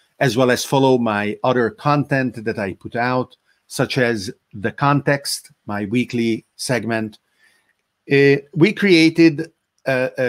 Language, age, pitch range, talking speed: English, 50-69, 110-140 Hz, 135 wpm